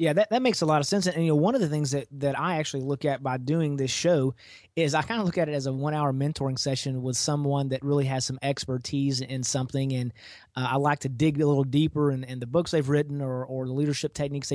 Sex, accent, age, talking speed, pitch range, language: male, American, 30-49, 270 wpm, 135-155 Hz, English